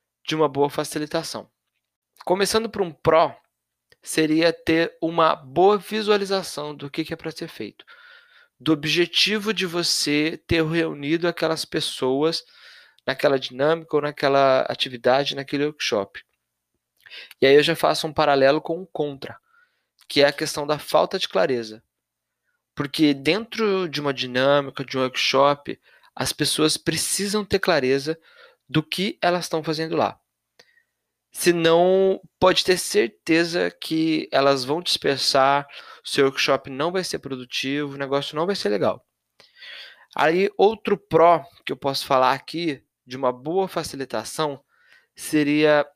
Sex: male